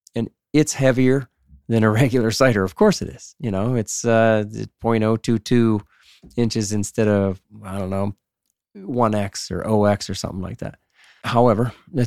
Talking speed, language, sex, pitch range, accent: 150 wpm, English, male, 100-125 Hz, American